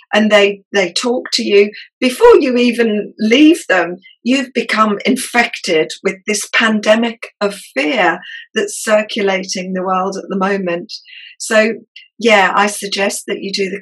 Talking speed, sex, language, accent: 150 wpm, female, English, British